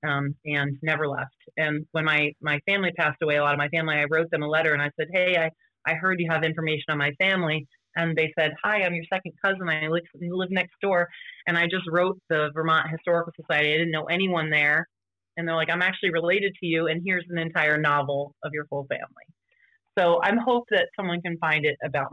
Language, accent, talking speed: English, American, 230 wpm